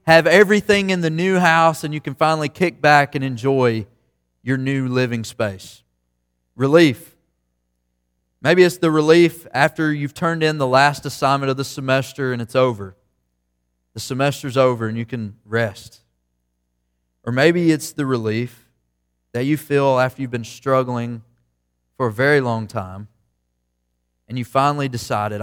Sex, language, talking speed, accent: male, English, 150 wpm, American